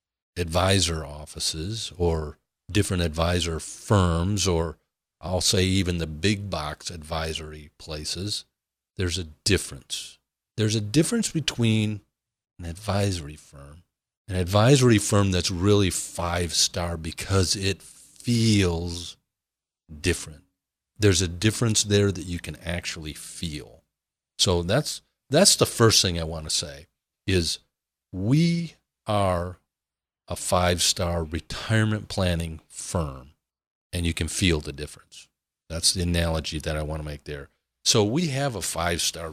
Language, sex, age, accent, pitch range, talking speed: English, male, 40-59, American, 80-110 Hz, 130 wpm